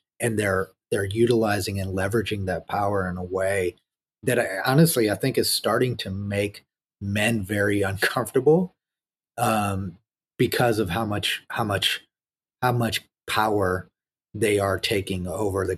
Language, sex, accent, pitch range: English, male, American, 95-115 Hz